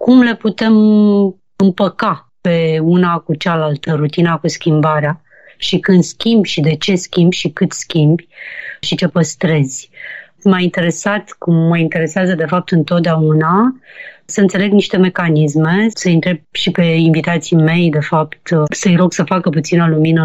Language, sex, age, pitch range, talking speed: Romanian, female, 30-49, 160-185 Hz, 150 wpm